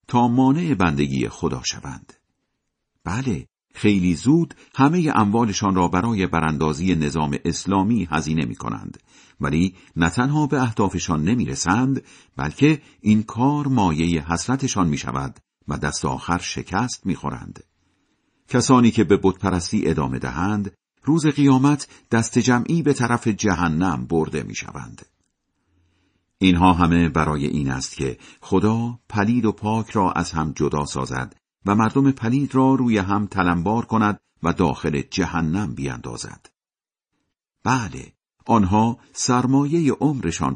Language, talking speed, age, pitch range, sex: Persian, 120 wpm, 50-69, 85-120 Hz, male